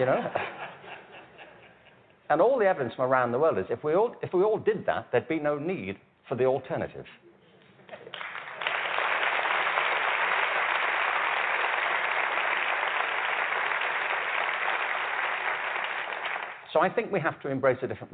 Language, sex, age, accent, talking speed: English, male, 50-69, British, 115 wpm